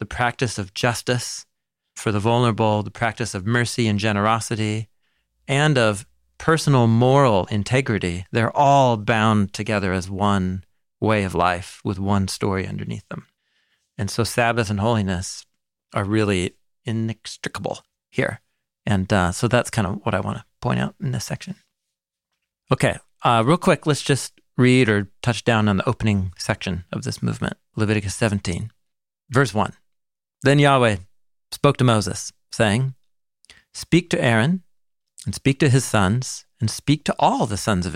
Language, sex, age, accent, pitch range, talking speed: English, male, 40-59, American, 100-125 Hz, 155 wpm